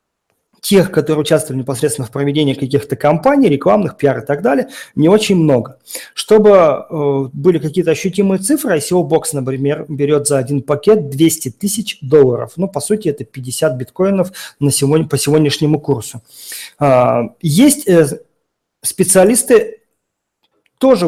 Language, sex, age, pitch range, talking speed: Russian, male, 40-59, 140-190 Hz, 120 wpm